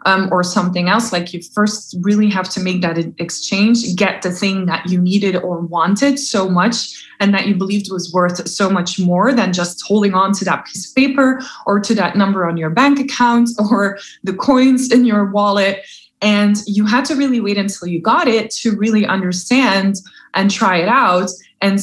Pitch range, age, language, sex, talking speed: 185-230 Hz, 20-39, English, female, 200 wpm